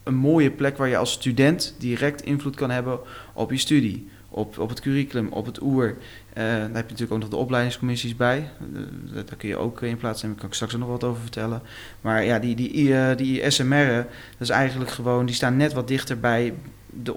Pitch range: 110-130 Hz